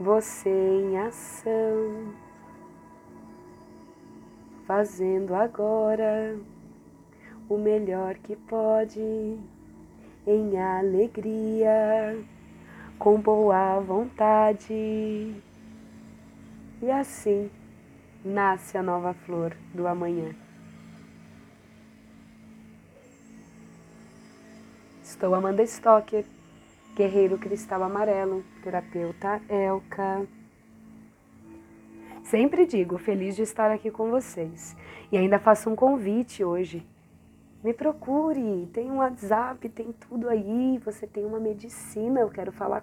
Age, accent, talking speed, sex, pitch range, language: 20-39, Brazilian, 85 wpm, female, 190-220 Hz, Portuguese